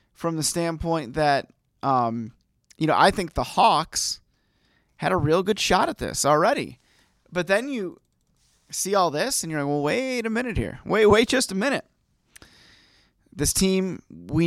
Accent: American